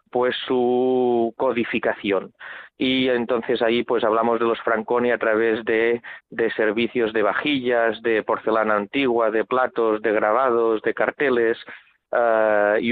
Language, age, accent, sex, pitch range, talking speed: Spanish, 30-49, Spanish, male, 110-125 Hz, 130 wpm